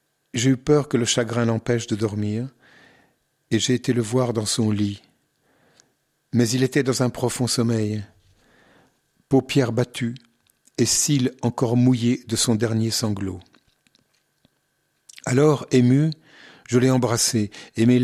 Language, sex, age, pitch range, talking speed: French, male, 50-69, 110-130 Hz, 135 wpm